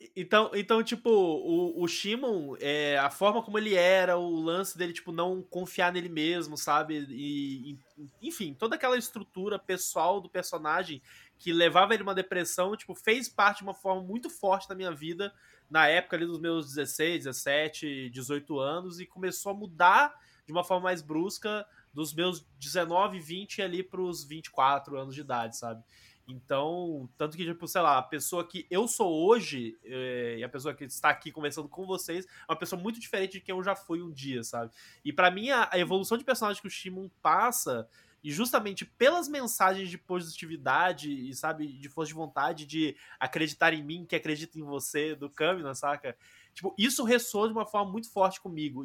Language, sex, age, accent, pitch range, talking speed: Portuguese, male, 20-39, Brazilian, 150-200 Hz, 190 wpm